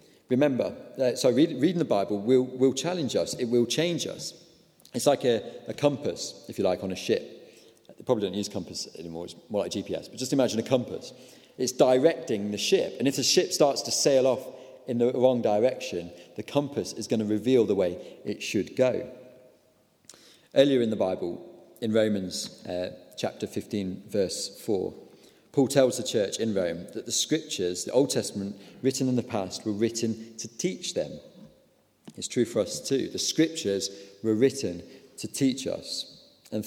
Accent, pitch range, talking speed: British, 105-135 Hz, 185 wpm